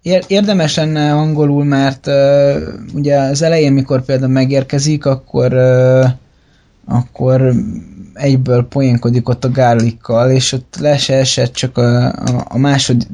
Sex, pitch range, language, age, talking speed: male, 120-135 Hz, Hungarian, 20-39, 120 wpm